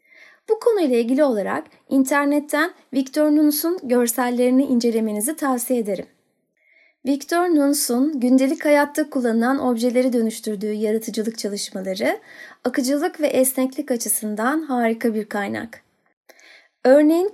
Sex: female